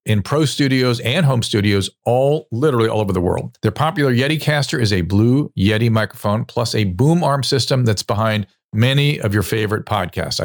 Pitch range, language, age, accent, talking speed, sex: 105-140 Hz, English, 40-59, American, 190 wpm, male